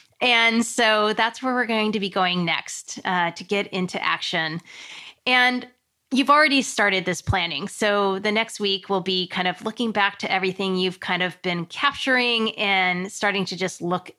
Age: 30-49